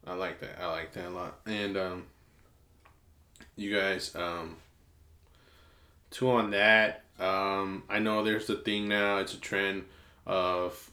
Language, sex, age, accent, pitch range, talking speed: English, male, 20-39, American, 90-115 Hz, 145 wpm